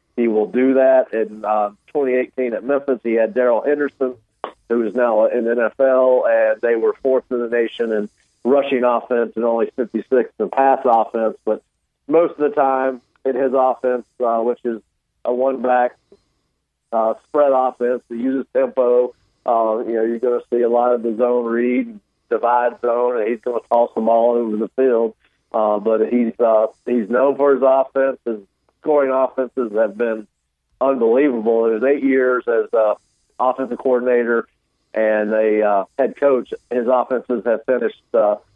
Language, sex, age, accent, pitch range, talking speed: English, male, 50-69, American, 110-130 Hz, 175 wpm